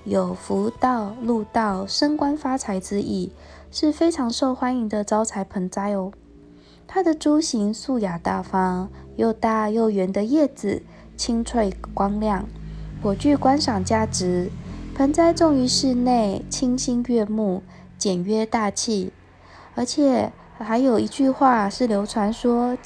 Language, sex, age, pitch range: Chinese, female, 20-39, 200-255 Hz